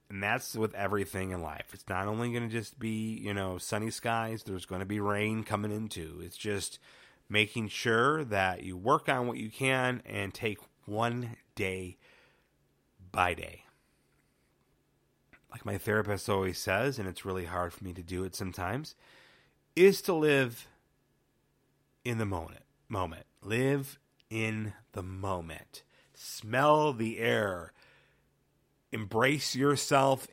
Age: 30-49